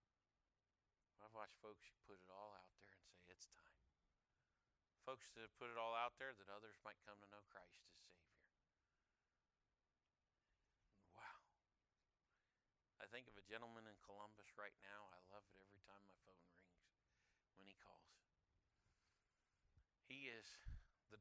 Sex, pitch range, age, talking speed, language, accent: male, 90-110 Hz, 50-69, 145 wpm, English, American